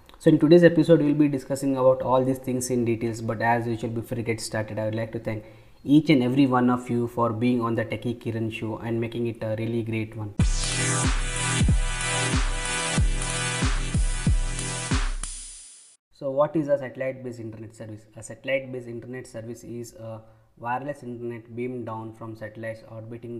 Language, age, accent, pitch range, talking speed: English, 20-39, Indian, 115-130 Hz, 175 wpm